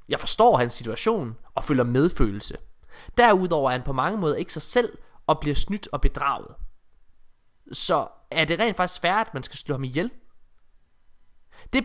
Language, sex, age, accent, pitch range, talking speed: Danish, male, 20-39, native, 125-180 Hz, 170 wpm